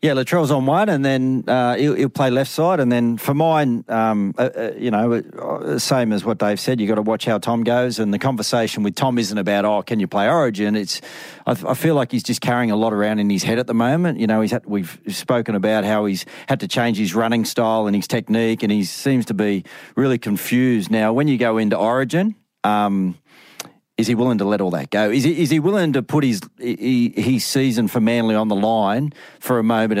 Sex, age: male, 40-59